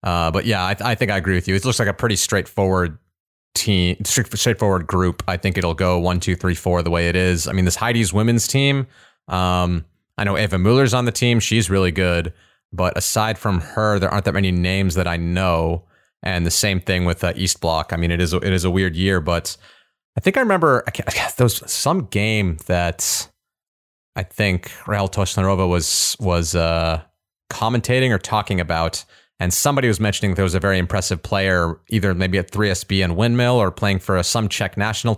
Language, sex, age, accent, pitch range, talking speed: English, male, 30-49, American, 90-110 Hz, 215 wpm